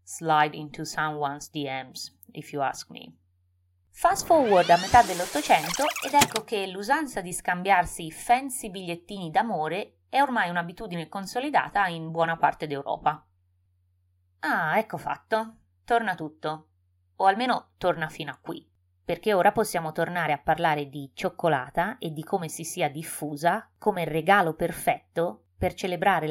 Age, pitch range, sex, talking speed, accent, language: 20-39, 145-210 Hz, female, 140 wpm, native, Italian